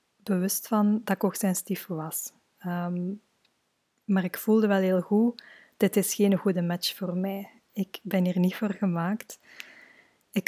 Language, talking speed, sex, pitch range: Dutch, 160 wpm, female, 175-200 Hz